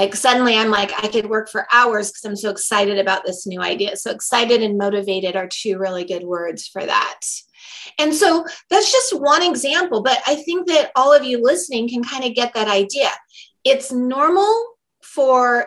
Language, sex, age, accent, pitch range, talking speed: English, female, 30-49, American, 210-295 Hz, 195 wpm